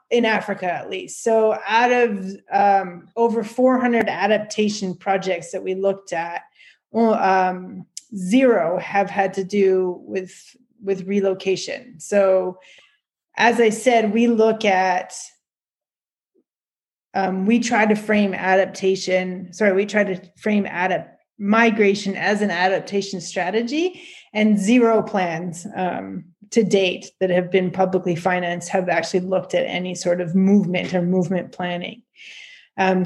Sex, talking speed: female, 135 wpm